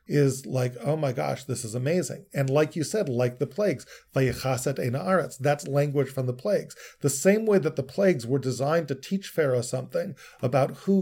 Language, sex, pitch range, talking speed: English, male, 130-160 Hz, 185 wpm